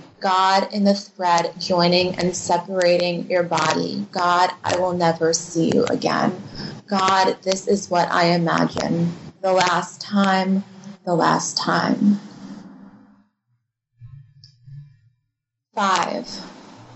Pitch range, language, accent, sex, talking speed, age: 170-200 Hz, English, American, female, 105 wpm, 20-39